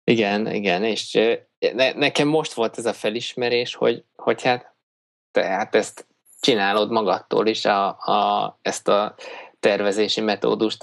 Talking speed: 125 wpm